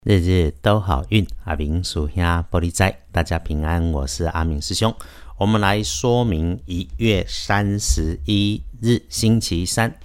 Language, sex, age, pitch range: Chinese, male, 50-69, 80-105 Hz